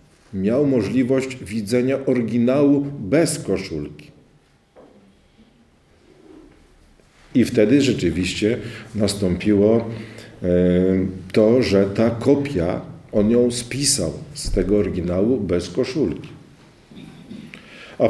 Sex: male